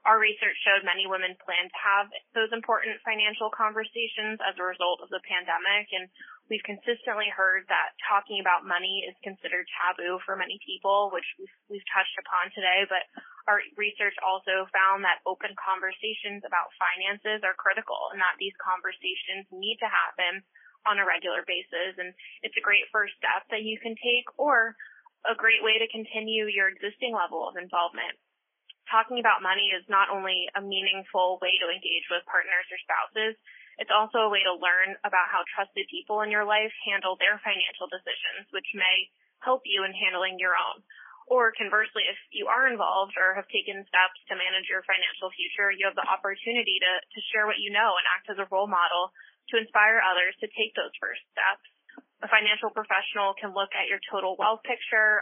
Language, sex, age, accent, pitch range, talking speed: English, female, 20-39, American, 185-220 Hz, 185 wpm